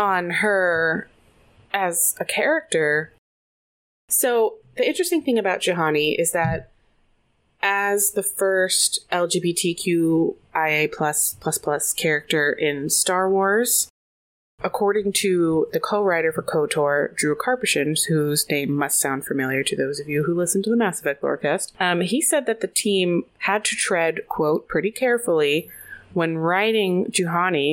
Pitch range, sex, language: 160-200 Hz, female, English